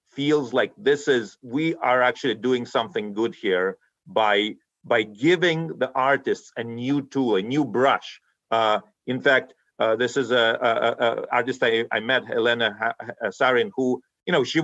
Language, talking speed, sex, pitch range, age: English, 180 wpm, male, 130-195 Hz, 40-59